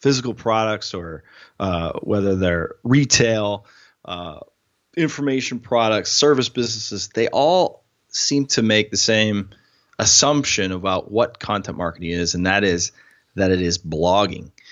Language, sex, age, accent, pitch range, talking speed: English, male, 30-49, American, 95-125 Hz, 130 wpm